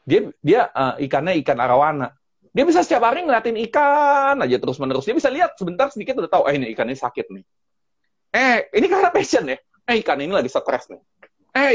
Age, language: 30-49, Indonesian